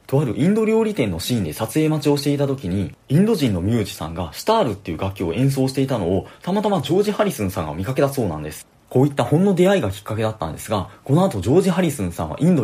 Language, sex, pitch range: Japanese, male, 95-150 Hz